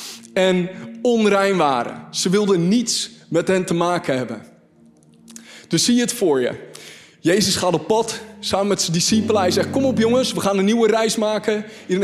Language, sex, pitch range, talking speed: Dutch, male, 175-240 Hz, 185 wpm